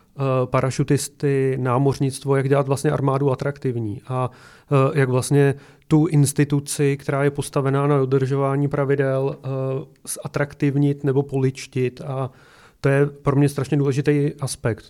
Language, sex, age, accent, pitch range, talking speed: Czech, male, 30-49, native, 130-145 Hz, 115 wpm